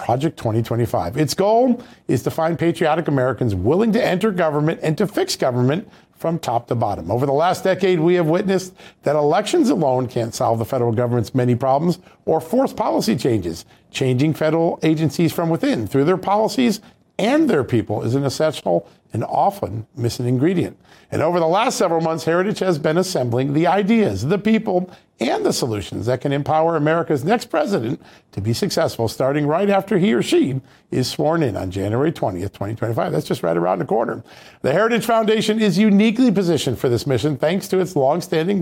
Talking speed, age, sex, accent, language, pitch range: 185 wpm, 50-69, male, American, English, 125-185 Hz